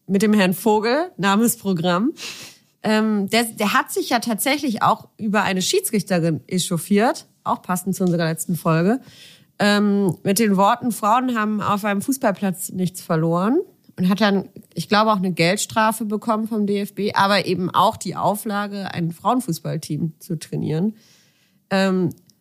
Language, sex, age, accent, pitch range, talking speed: German, female, 30-49, German, 180-220 Hz, 145 wpm